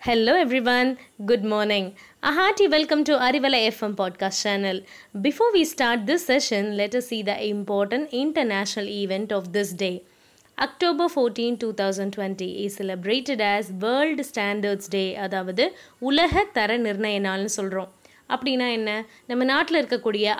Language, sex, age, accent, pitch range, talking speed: Tamil, female, 20-39, native, 200-275 Hz, 140 wpm